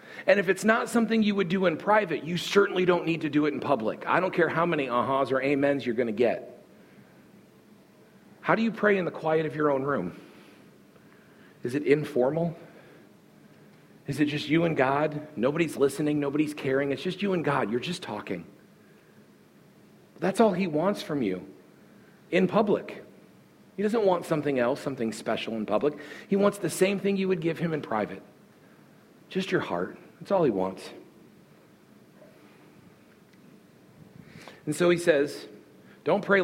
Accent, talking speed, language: American, 170 wpm, English